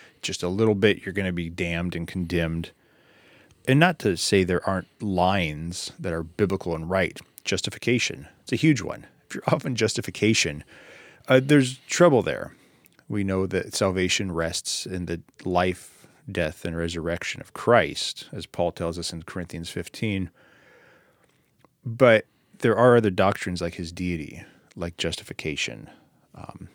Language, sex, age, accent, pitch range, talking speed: English, male, 30-49, American, 85-105 Hz, 155 wpm